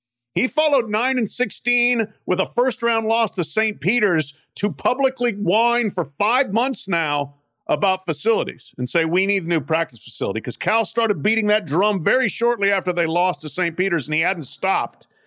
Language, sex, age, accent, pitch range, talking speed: English, male, 50-69, American, 175-245 Hz, 185 wpm